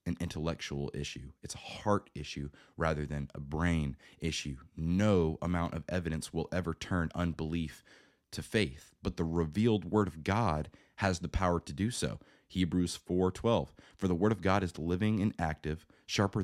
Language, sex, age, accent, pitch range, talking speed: English, male, 20-39, American, 75-95 Hz, 170 wpm